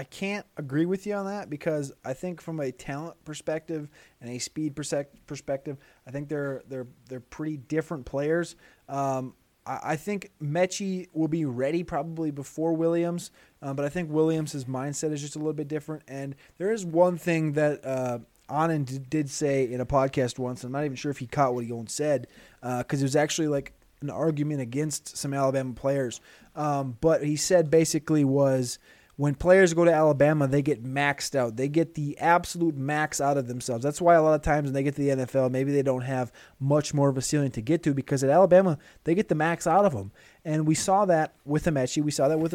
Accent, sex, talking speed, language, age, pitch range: American, male, 220 wpm, English, 20-39, 135-160 Hz